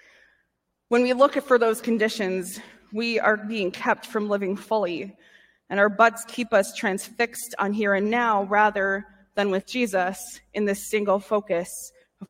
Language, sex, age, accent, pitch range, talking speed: English, female, 20-39, American, 200-240 Hz, 155 wpm